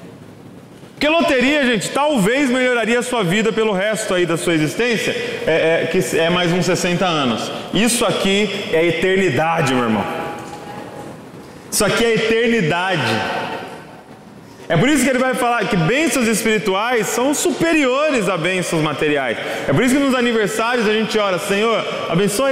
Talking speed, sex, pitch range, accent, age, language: 155 wpm, male, 170-245 Hz, Brazilian, 20-39, Portuguese